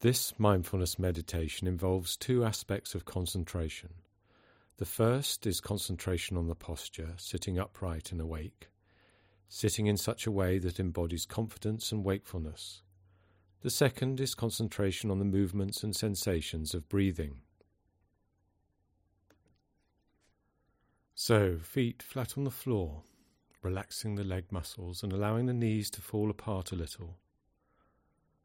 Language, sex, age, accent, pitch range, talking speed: English, male, 40-59, British, 90-105 Hz, 125 wpm